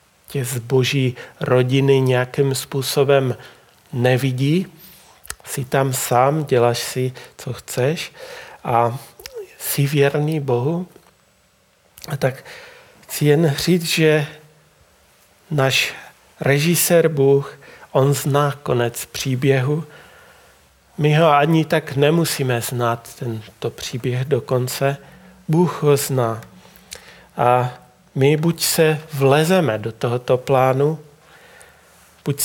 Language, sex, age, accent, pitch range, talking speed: Czech, male, 40-59, native, 130-150 Hz, 95 wpm